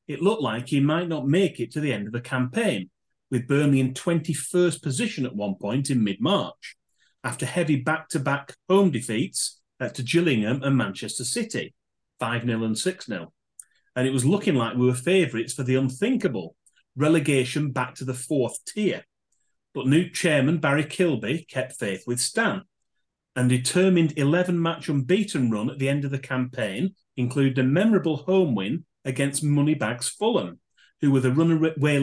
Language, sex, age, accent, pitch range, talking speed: English, male, 40-59, British, 130-165 Hz, 160 wpm